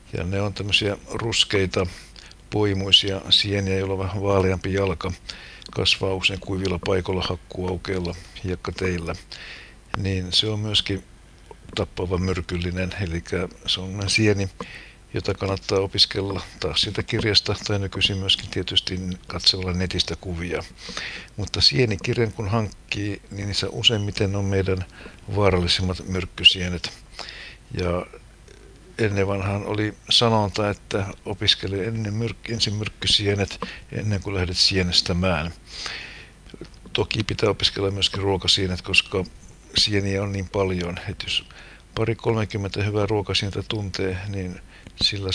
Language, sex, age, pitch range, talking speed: Finnish, male, 60-79, 90-100 Hz, 110 wpm